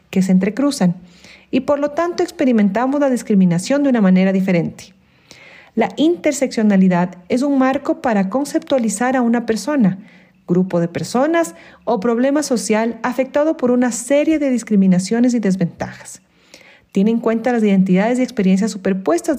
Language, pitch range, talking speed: Spanish, 185-260 Hz, 140 wpm